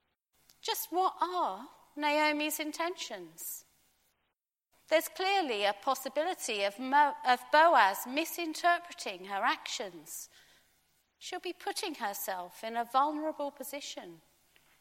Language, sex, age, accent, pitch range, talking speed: English, female, 40-59, British, 220-320 Hz, 90 wpm